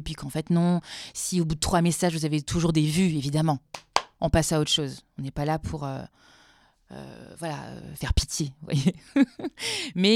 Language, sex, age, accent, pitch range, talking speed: French, female, 20-39, French, 160-205 Hz, 215 wpm